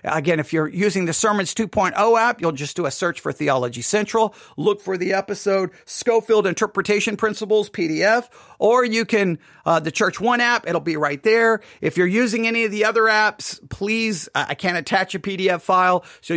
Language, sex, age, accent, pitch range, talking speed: English, male, 50-69, American, 160-225 Hz, 190 wpm